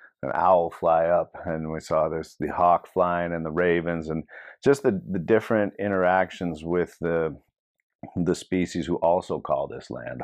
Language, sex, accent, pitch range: English, male, American, 80-95 Hz